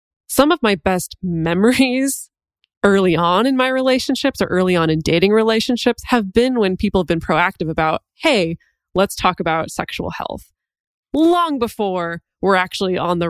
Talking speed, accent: 160 wpm, American